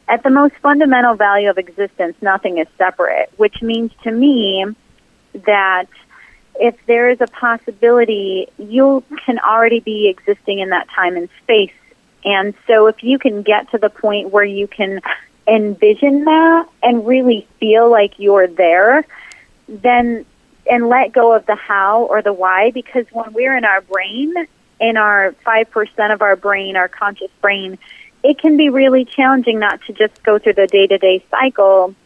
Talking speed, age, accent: 165 wpm, 30-49, American